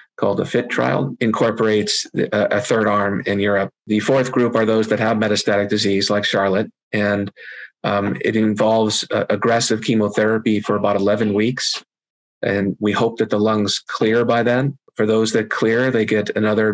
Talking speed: 170 wpm